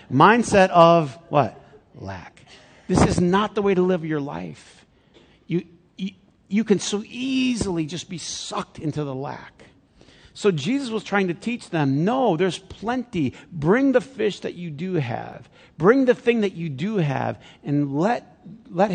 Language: English